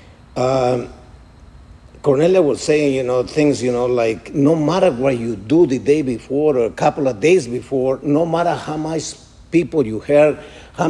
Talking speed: 180 wpm